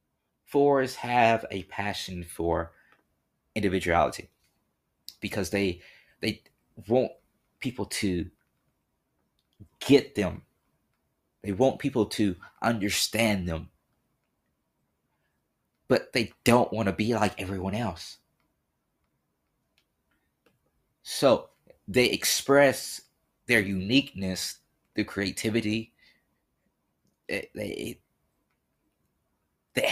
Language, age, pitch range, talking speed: English, 20-39, 90-115 Hz, 75 wpm